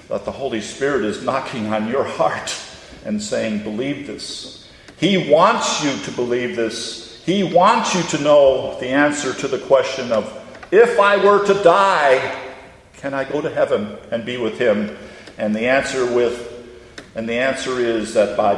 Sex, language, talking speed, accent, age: male, English, 175 wpm, American, 50-69